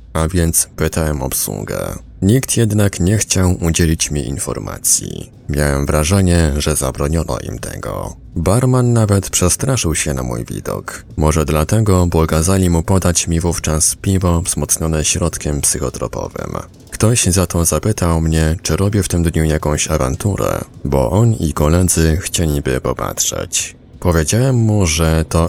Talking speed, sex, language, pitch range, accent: 135 wpm, male, Polish, 75-95 Hz, native